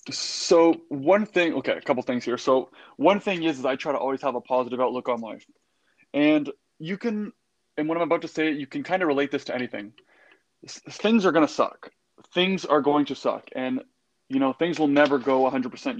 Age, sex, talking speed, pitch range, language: 20-39, male, 230 wpm, 130-170 Hz, English